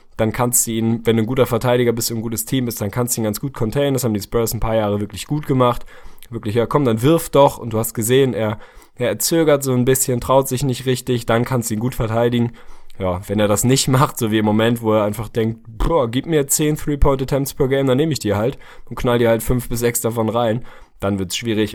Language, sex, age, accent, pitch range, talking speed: German, male, 20-39, German, 105-130 Hz, 270 wpm